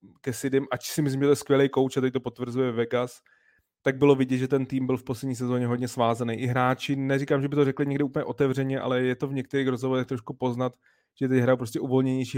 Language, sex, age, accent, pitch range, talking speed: Czech, male, 30-49, native, 120-130 Hz, 235 wpm